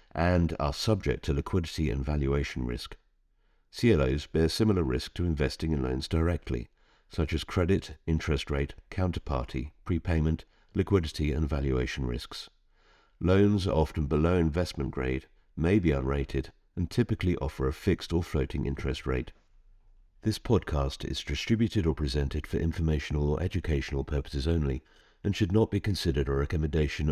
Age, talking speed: 50-69, 145 wpm